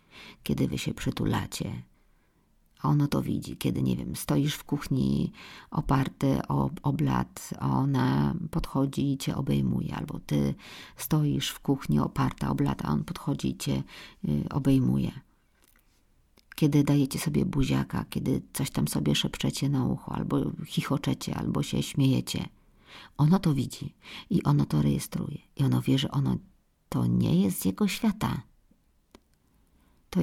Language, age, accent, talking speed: Polish, 50-69, native, 145 wpm